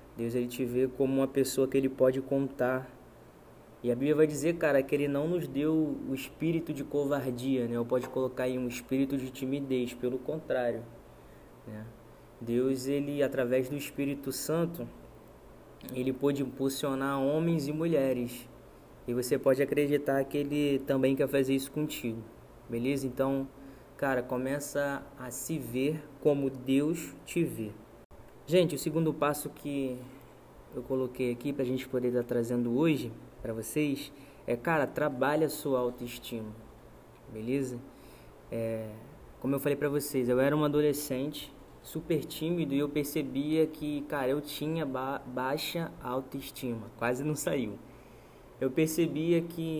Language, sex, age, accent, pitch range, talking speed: Portuguese, male, 20-39, Brazilian, 125-145 Hz, 145 wpm